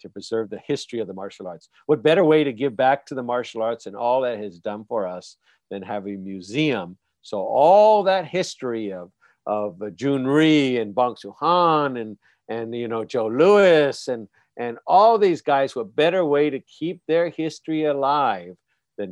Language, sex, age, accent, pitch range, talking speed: English, male, 50-69, American, 105-140 Hz, 185 wpm